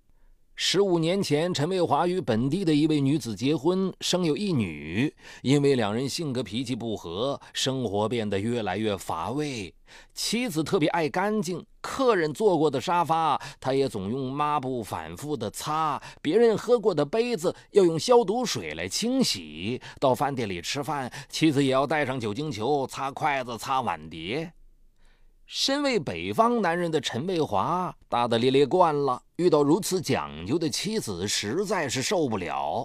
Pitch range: 115-180 Hz